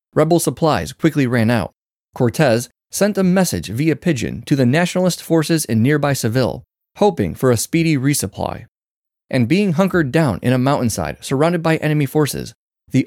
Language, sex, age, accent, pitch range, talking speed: English, male, 30-49, American, 115-165 Hz, 160 wpm